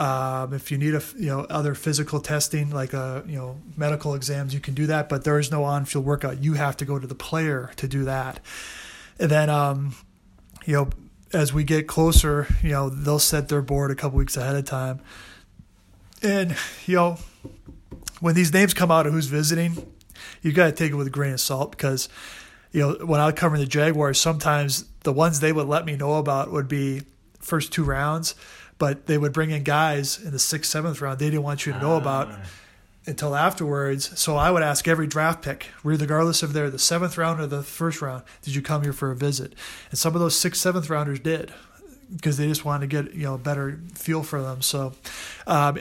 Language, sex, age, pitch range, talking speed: English, male, 20-39, 140-160 Hz, 220 wpm